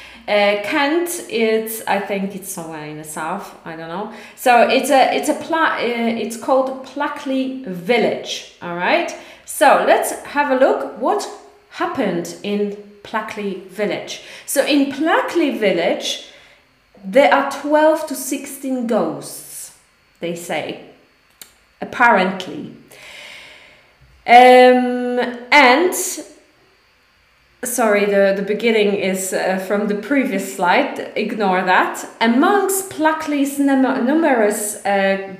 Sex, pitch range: female, 205-290 Hz